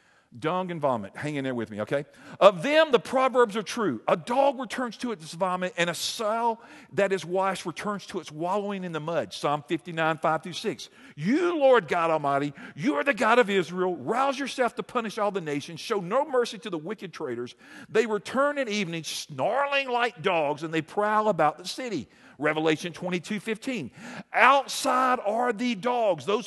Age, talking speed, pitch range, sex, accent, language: 50-69, 190 wpm, 160-240 Hz, male, American, English